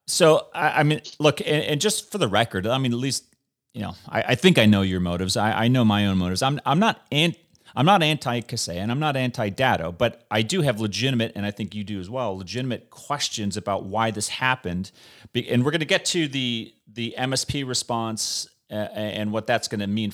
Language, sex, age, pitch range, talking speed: English, male, 30-49, 100-125 Hz, 230 wpm